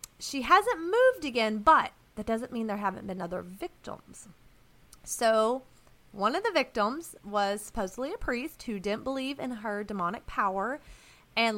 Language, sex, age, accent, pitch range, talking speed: English, female, 30-49, American, 210-275 Hz, 155 wpm